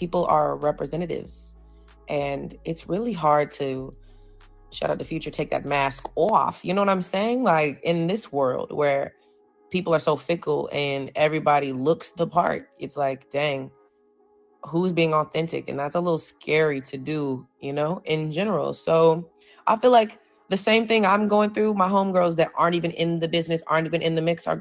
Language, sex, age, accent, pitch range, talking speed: English, female, 20-39, American, 145-180 Hz, 185 wpm